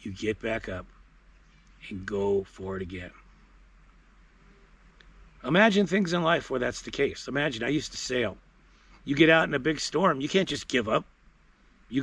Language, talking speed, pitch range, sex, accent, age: English, 175 wpm, 100-140 Hz, male, American, 50-69